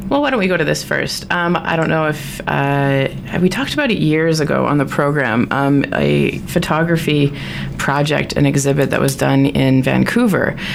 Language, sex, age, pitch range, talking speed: English, female, 20-39, 135-155 Hz, 195 wpm